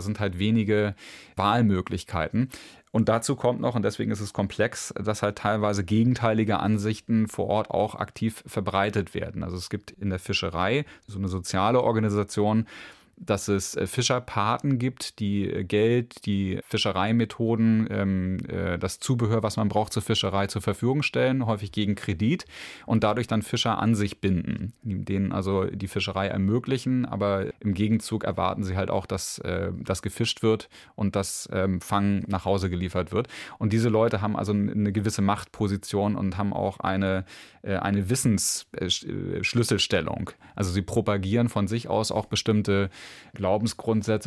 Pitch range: 100-110 Hz